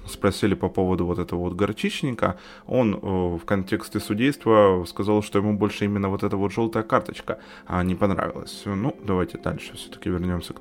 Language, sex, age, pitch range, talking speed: Ukrainian, male, 20-39, 90-115 Hz, 165 wpm